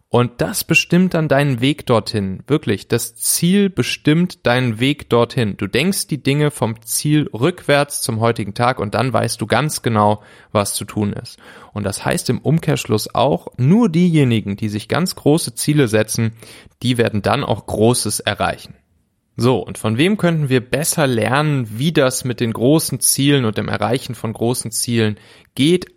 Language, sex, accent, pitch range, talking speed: German, male, German, 110-150 Hz, 175 wpm